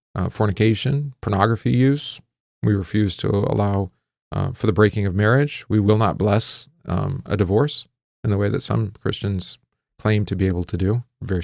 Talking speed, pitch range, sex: 180 wpm, 100-130 Hz, male